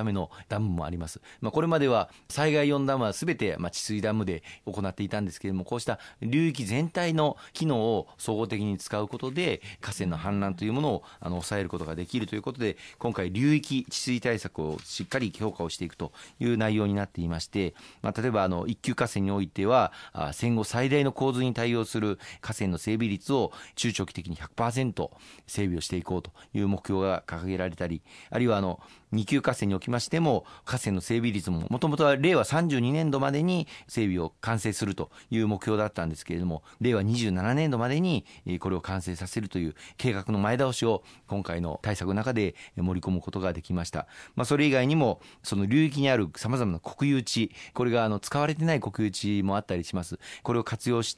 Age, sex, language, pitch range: 40-59, male, Japanese, 95-125 Hz